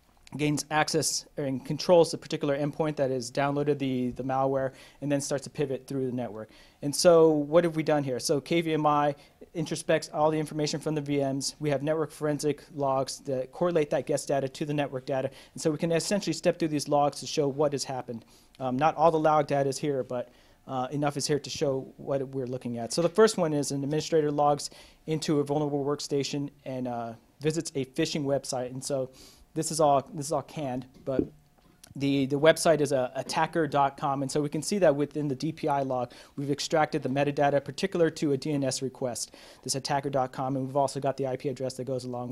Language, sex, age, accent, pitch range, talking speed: English, male, 30-49, American, 130-155 Hz, 210 wpm